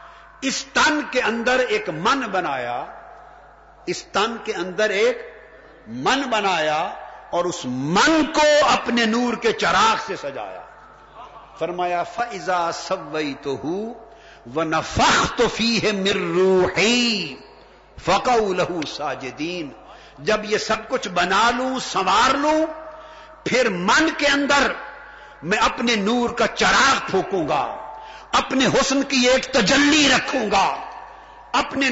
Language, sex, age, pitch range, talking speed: Urdu, male, 50-69, 215-290 Hz, 115 wpm